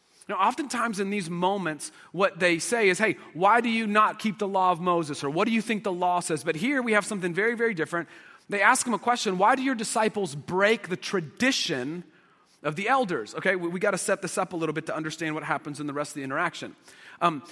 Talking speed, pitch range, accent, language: 245 wpm, 175-220 Hz, American, English